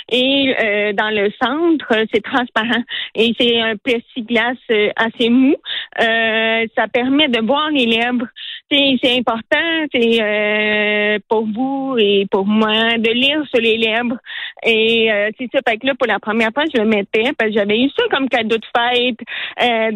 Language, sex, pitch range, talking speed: French, female, 220-260 Hz, 175 wpm